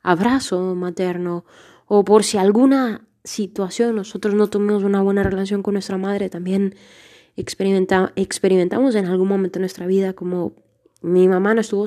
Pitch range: 190-235 Hz